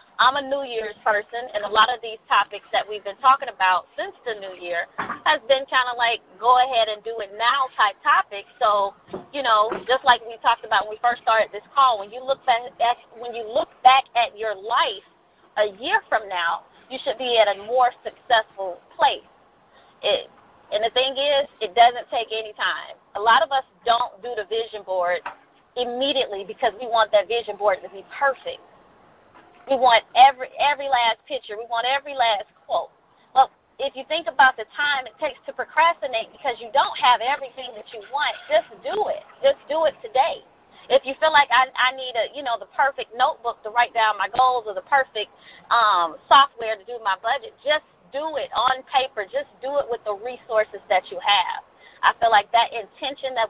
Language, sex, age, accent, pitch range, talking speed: English, female, 30-49, American, 220-275 Hz, 200 wpm